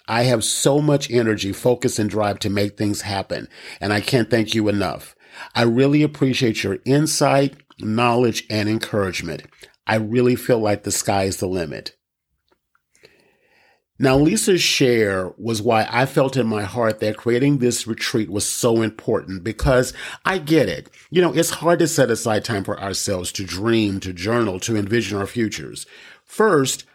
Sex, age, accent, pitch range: male, 40-59, American, 105-135 Hz